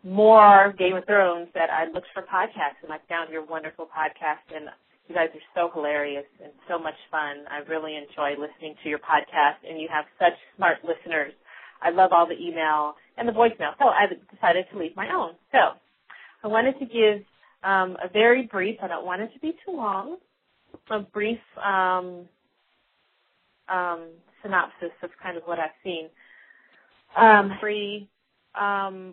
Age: 30-49